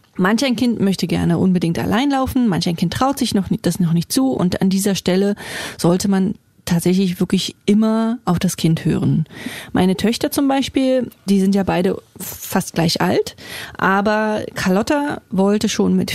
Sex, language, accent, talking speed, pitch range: female, German, German, 170 wpm, 180-220 Hz